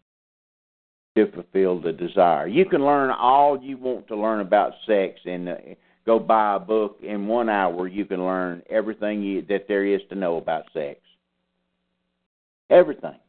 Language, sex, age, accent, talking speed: English, male, 60-79, American, 165 wpm